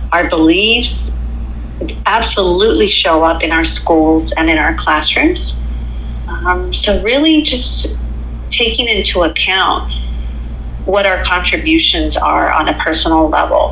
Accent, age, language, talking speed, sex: American, 40-59, English, 120 wpm, female